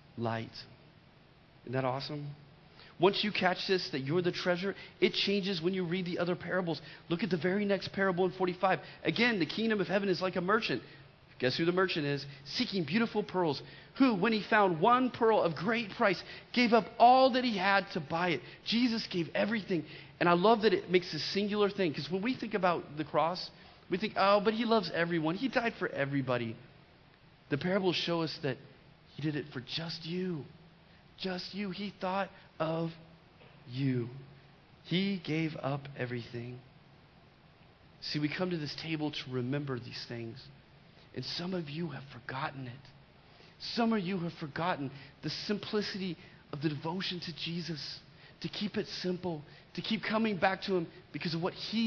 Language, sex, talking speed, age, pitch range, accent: English, male, 180 wpm, 30-49, 150-195 Hz, American